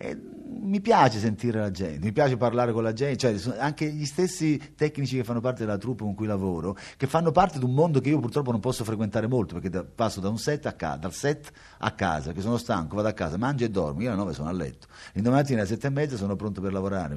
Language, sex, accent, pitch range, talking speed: Italian, male, native, 95-150 Hz, 260 wpm